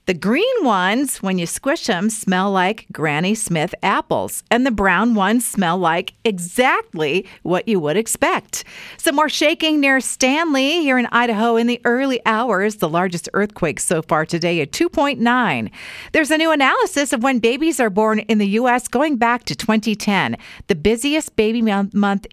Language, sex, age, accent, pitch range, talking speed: English, female, 50-69, American, 185-265 Hz, 170 wpm